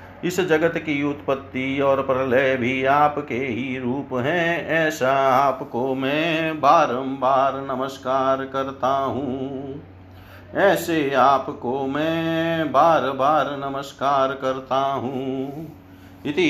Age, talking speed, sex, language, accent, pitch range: 50-69, 100 wpm, male, Hindi, native, 135-155 Hz